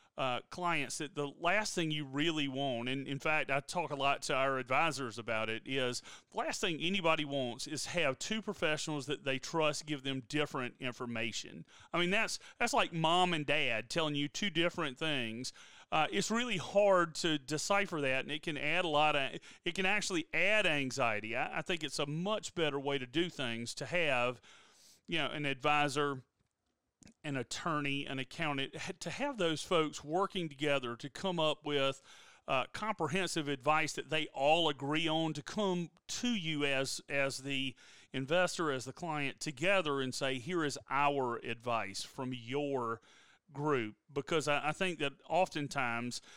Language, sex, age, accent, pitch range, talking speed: English, male, 40-59, American, 135-170 Hz, 175 wpm